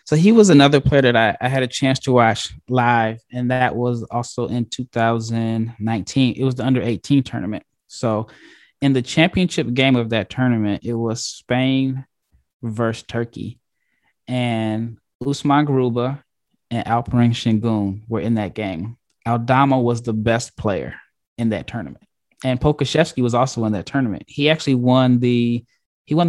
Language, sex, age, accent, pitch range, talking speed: English, male, 20-39, American, 115-130 Hz, 160 wpm